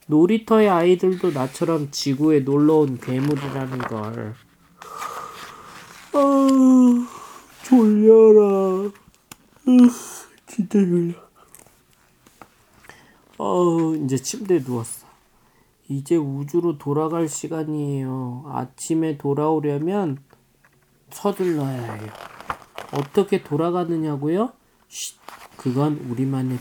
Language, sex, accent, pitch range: Korean, male, native, 130-180 Hz